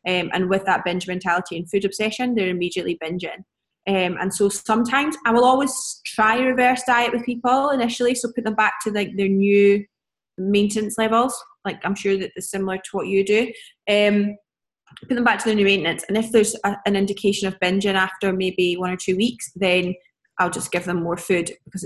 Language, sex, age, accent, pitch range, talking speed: English, female, 20-39, British, 180-215 Hz, 210 wpm